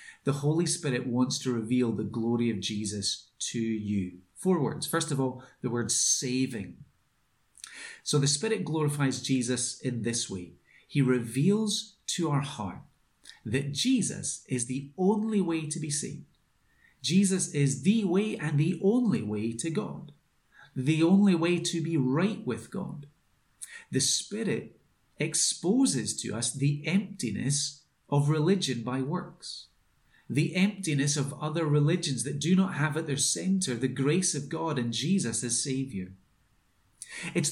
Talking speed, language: 145 wpm, English